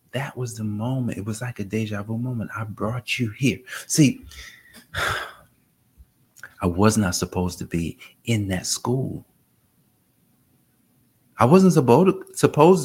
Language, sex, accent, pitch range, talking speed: English, male, American, 90-120 Hz, 140 wpm